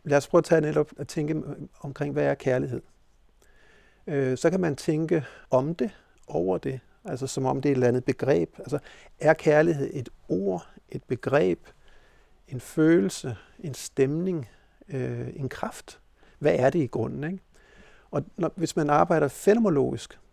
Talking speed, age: 165 wpm, 60-79